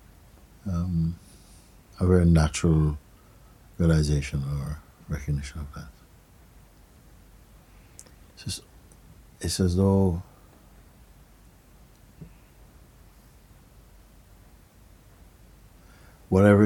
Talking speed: 55 wpm